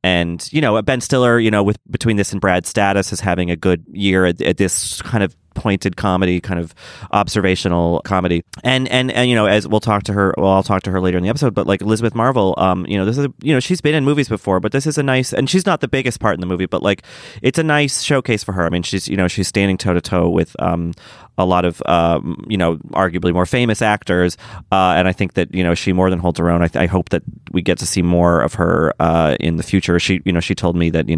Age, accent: 30-49, American